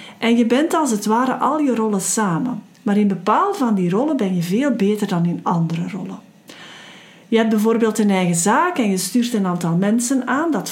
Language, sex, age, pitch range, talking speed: Dutch, female, 40-59, 190-250 Hz, 215 wpm